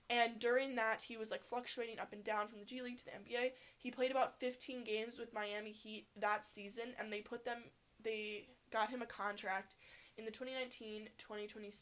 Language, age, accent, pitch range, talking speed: English, 10-29, American, 210-245 Hz, 200 wpm